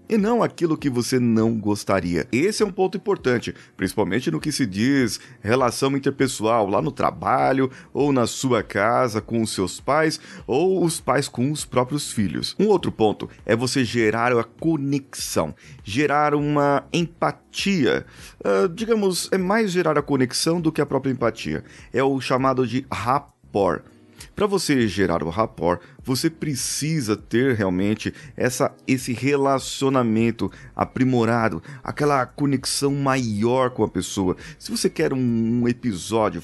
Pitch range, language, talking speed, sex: 110-140 Hz, Portuguese, 145 wpm, male